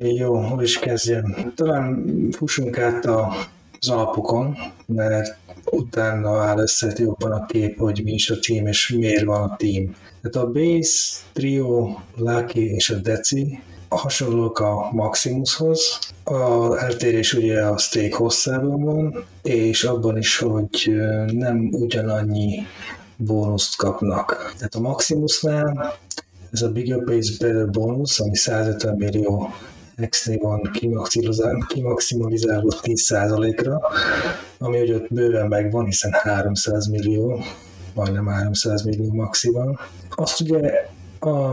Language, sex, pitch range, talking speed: Hungarian, male, 105-125 Hz, 125 wpm